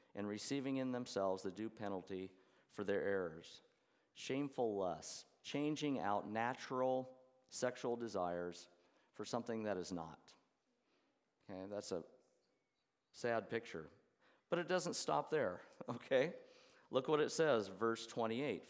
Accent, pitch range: American, 105-130 Hz